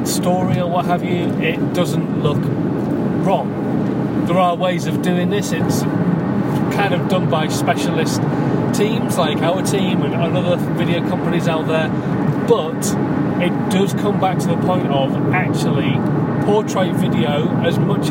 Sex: male